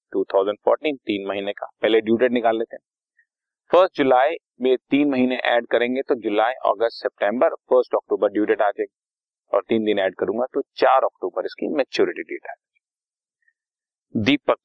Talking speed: 100 wpm